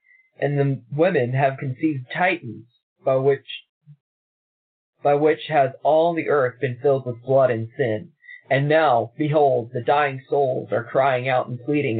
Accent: American